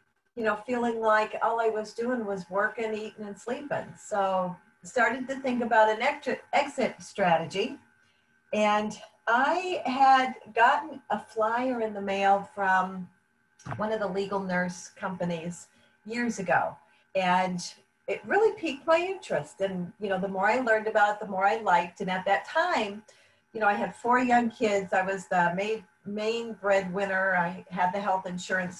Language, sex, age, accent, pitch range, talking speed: English, female, 50-69, American, 185-225 Hz, 165 wpm